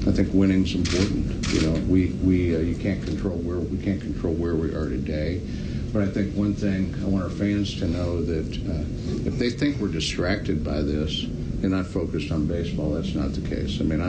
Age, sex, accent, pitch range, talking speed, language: 60-79, male, American, 80-95 Hz, 215 wpm, English